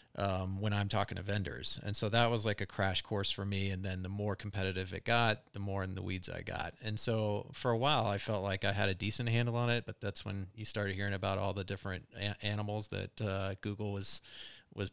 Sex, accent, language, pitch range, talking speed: male, American, English, 95-110 Hz, 250 wpm